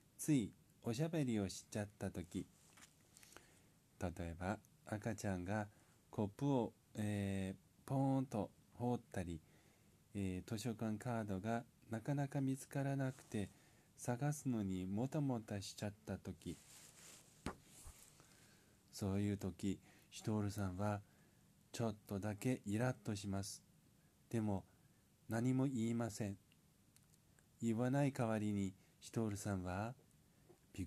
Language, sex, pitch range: Japanese, male, 100-125 Hz